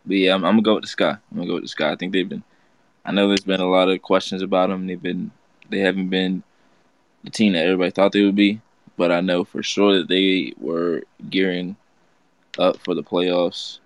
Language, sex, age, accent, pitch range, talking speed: English, male, 20-39, American, 90-95 Hz, 235 wpm